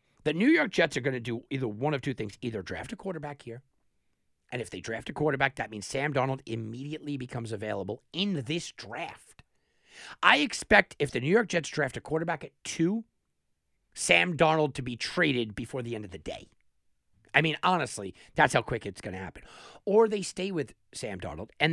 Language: English